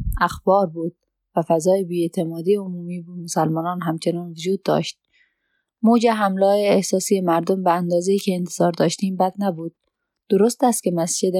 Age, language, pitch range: 20-39, Persian, 170-210 Hz